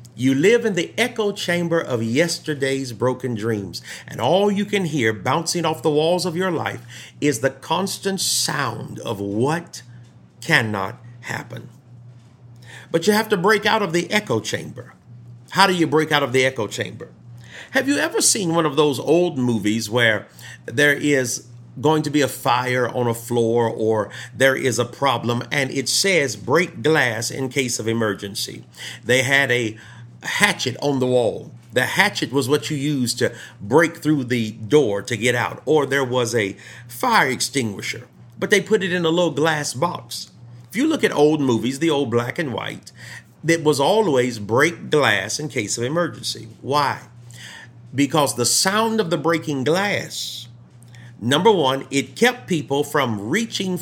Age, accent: 50-69, American